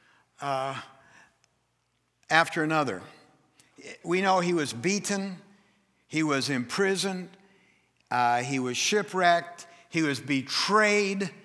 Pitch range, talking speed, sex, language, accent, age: 180-230 Hz, 95 wpm, male, English, American, 60-79